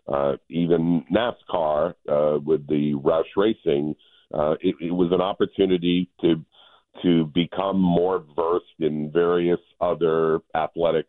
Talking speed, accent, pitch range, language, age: 125 wpm, American, 80-95 Hz, English, 50-69